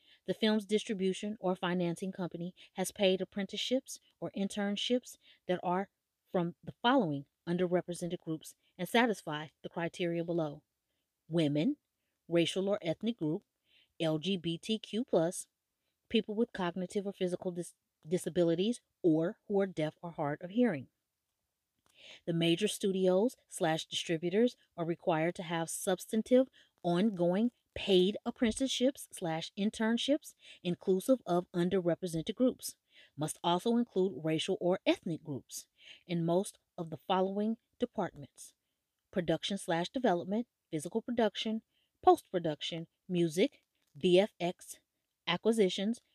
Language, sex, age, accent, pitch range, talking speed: English, female, 30-49, American, 170-220 Hz, 110 wpm